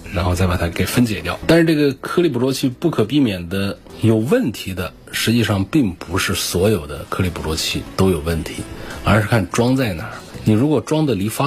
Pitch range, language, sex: 90-125 Hz, Chinese, male